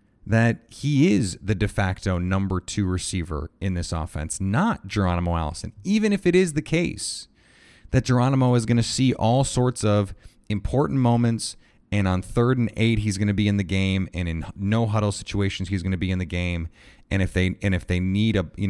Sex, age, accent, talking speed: male, 30-49, American, 210 wpm